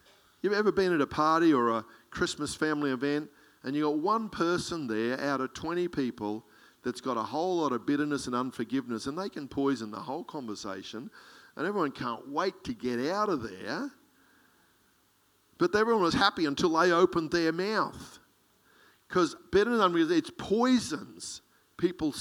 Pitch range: 130-215 Hz